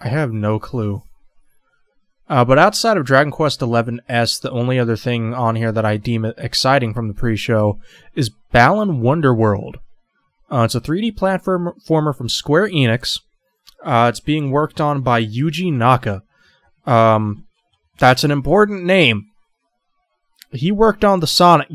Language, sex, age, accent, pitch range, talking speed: English, male, 20-39, American, 120-155 Hz, 145 wpm